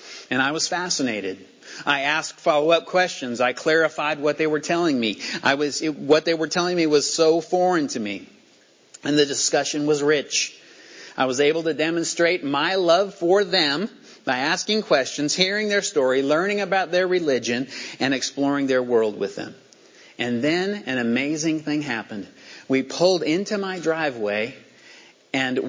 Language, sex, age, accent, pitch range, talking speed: English, male, 50-69, American, 125-165 Hz, 165 wpm